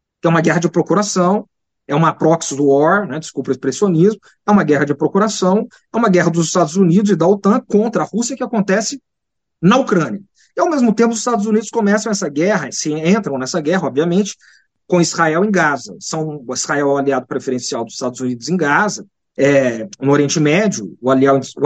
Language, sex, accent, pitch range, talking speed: Portuguese, male, Brazilian, 160-210 Hz, 195 wpm